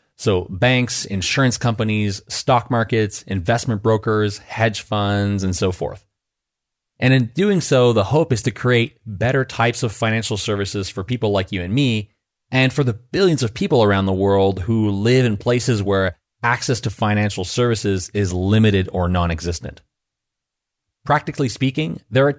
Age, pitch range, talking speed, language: 30-49, 100-130 Hz, 160 wpm, English